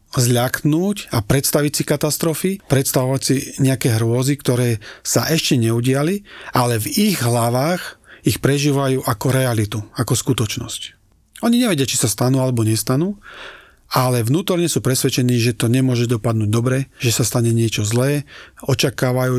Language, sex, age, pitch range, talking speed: Slovak, male, 40-59, 120-145 Hz, 140 wpm